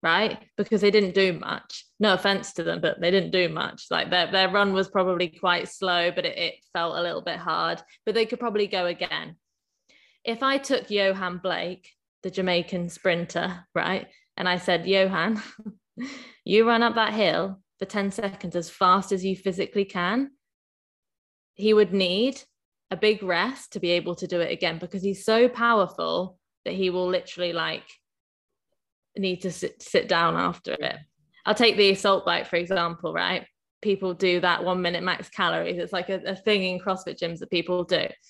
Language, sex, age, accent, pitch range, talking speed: English, female, 20-39, British, 180-220 Hz, 185 wpm